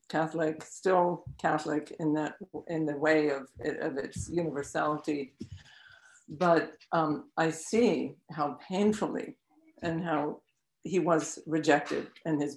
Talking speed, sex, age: 125 wpm, female, 60-79